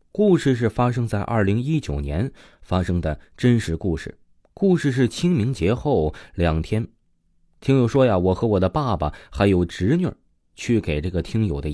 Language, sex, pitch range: Chinese, male, 85-125 Hz